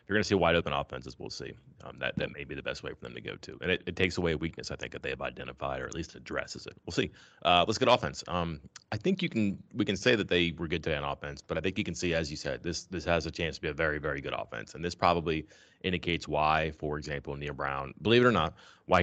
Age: 30-49